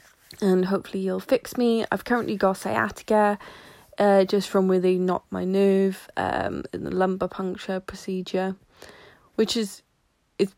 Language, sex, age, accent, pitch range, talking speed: English, female, 20-39, British, 180-210 Hz, 145 wpm